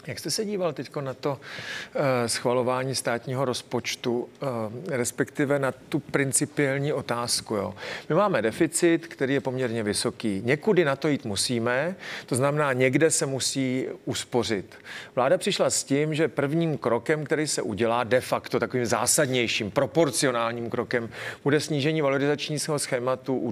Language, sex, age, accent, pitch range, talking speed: Czech, male, 40-59, native, 125-155 Hz, 140 wpm